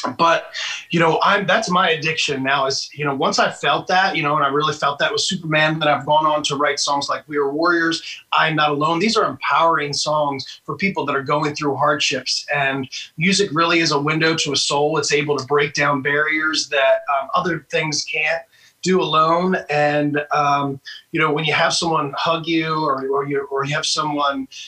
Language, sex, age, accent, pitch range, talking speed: English, male, 30-49, American, 140-165 Hz, 215 wpm